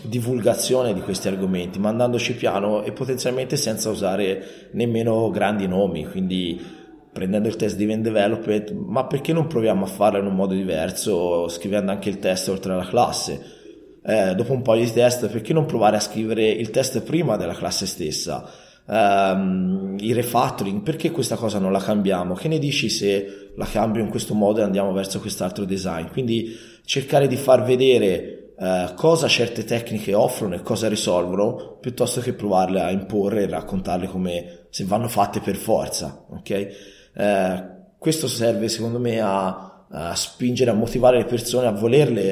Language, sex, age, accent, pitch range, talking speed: Italian, male, 20-39, native, 95-120 Hz, 165 wpm